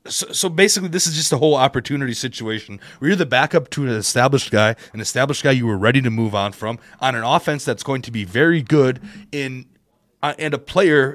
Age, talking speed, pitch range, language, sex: 30-49, 225 wpm, 105-140 Hz, English, male